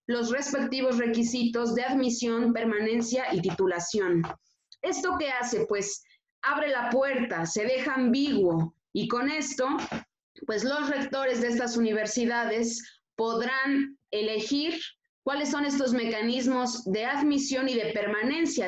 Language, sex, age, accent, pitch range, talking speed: Spanish, female, 20-39, Mexican, 215-265 Hz, 120 wpm